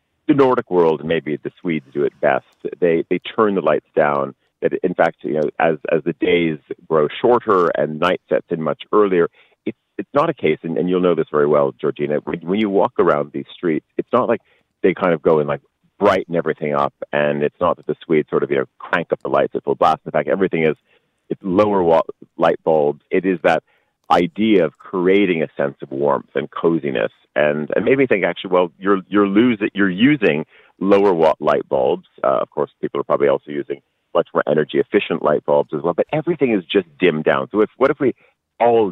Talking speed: 225 wpm